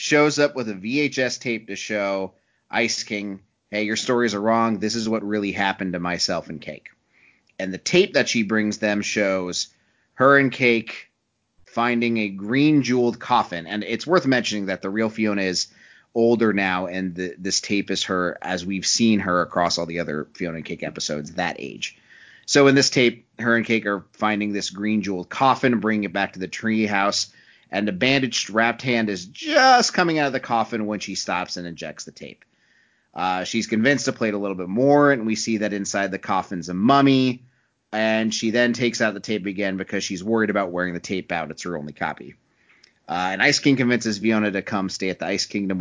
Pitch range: 95-120 Hz